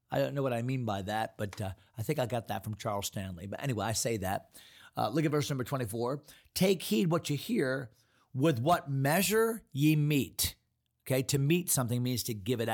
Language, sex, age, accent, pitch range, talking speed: English, male, 40-59, American, 120-165 Hz, 220 wpm